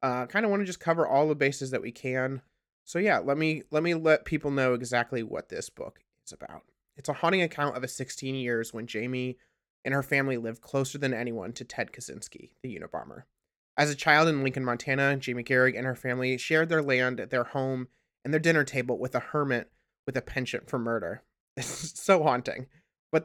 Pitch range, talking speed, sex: 125-145 Hz, 215 wpm, male